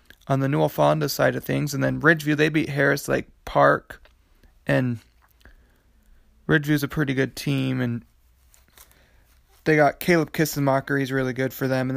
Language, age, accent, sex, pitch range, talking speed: English, 20-39, American, male, 130-155 Hz, 160 wpm